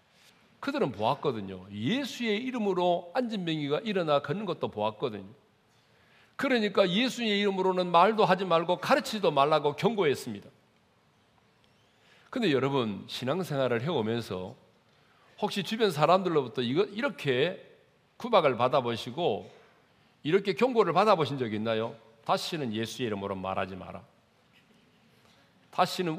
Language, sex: Korean, male